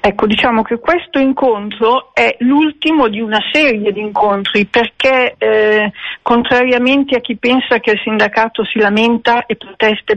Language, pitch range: Italian, 205-250 Hz